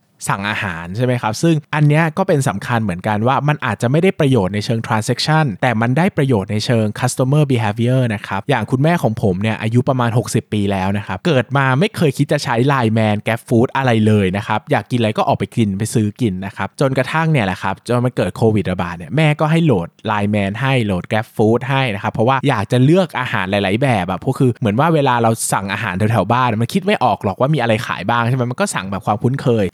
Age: 20-39